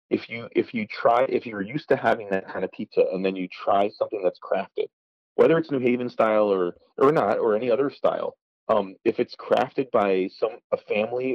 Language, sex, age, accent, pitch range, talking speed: English, male, 30-49, American, 90-120 Hz, 215 wpm